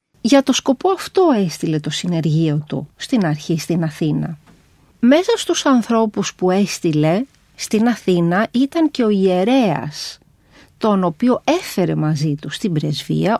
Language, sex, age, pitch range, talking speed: Greek, female, 40-59, 165-240 Hz, 135 wpm